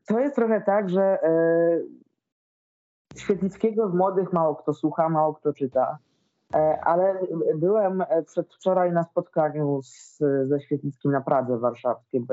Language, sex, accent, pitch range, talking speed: Polish, female, native, 155-195 Hz, 130 wpm